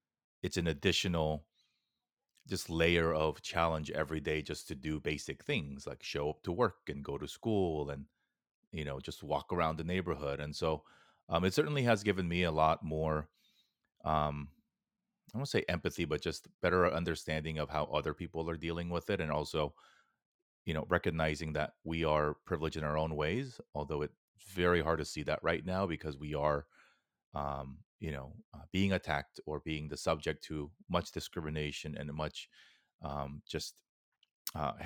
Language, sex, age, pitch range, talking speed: English, male, 30-49, 75-85 Hz, 180 wpm